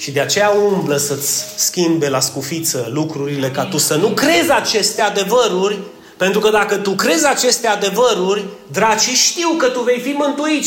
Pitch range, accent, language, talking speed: 150-215 Hz, native, Romanian, 170 wpm